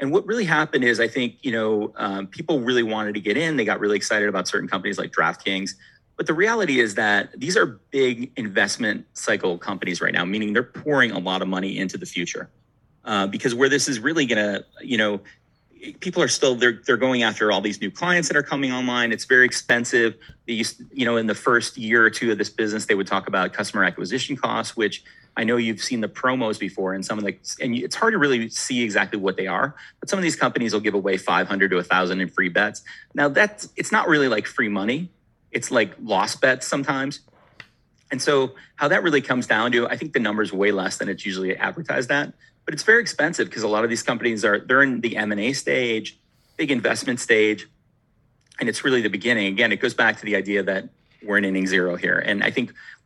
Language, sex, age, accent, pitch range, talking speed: English, male, 30-49, American, 100-130 Hz, 235 wpm